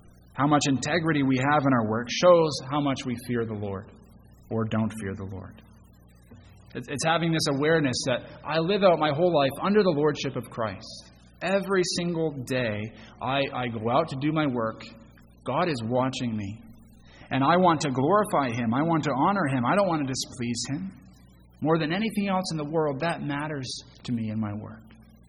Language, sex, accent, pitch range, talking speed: English, male, American, 110-145 Hz, 195 wpm